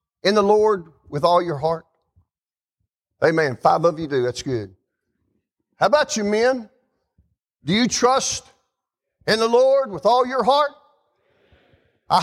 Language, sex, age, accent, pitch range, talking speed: English, male, 50-69, American, 200-290 Hz, 140 wpm